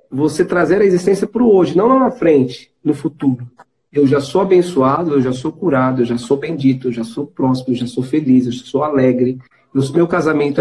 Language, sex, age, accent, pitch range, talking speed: Portuguese, male, 40-59, Brazilian, 140-185 Hz, 215 wpm